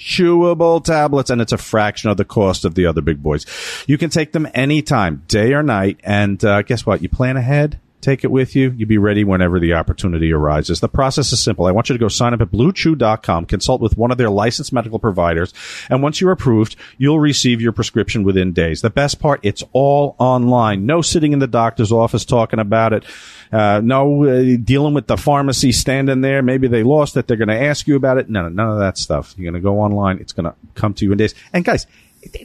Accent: American